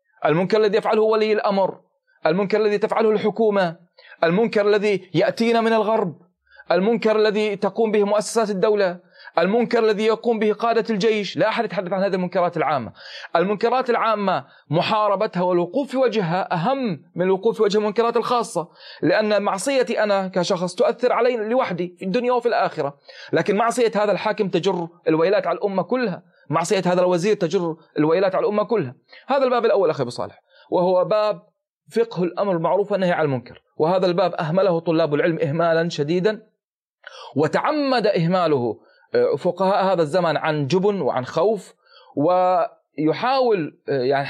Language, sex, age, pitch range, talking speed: Arabic, male, 30-49, 170-220 Hz, 145 wpm